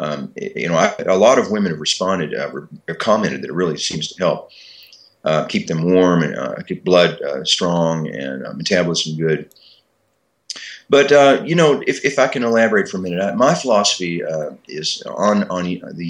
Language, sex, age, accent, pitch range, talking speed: English, male, 40-59, American, 80-105 Hz, 200 wpm